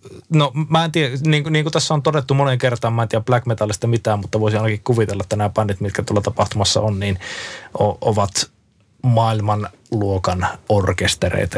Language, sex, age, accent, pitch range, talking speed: Finnish, male, 20-39, native, 105-130 Hz, 175 wpm